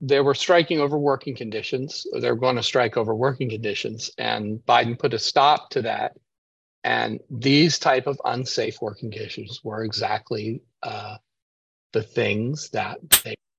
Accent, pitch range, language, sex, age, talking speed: American, 120-160 Hz, English, male, 40-59, 150 wpm